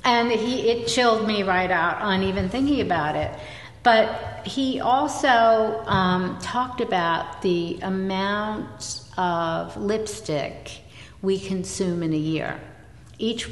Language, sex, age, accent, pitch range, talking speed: English, female, 60-79, American, 155-205 Hz, 125 wpm